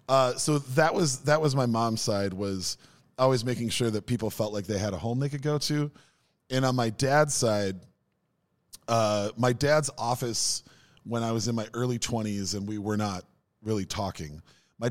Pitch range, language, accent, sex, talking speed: 100-130 Hz, English, American, male, 195 wpm